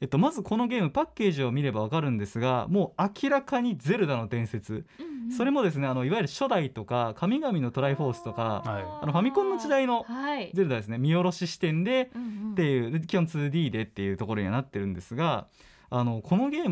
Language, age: Japanese, 20-39